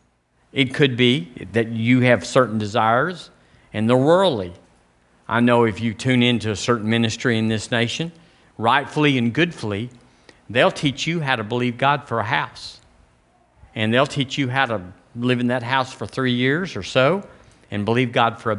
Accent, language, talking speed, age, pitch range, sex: American, English, 185 wpm, 50-69, 100-135 Hz, male